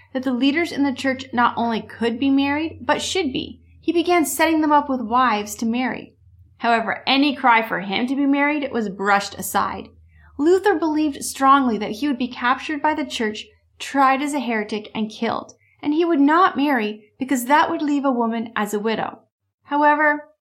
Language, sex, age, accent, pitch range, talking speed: English, female, 30-49, American, 215-290 Hz, 195 wpm